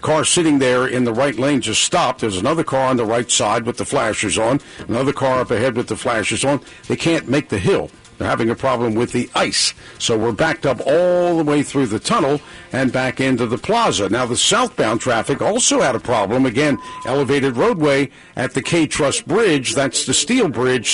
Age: 50-69